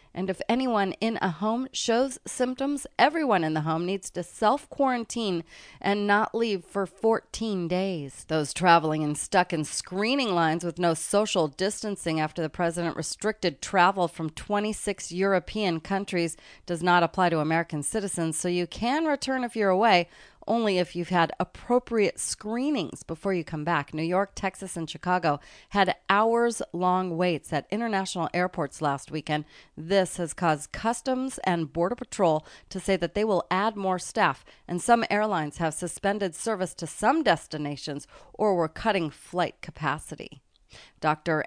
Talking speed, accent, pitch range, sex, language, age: 155 wpm, American, 165-205 Hz, female, English, 30-49